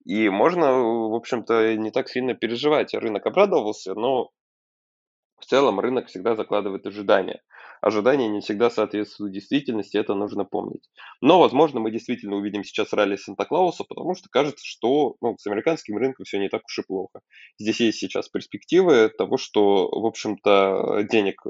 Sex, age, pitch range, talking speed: male, 20-39, 100-120 Hz, 155 wpm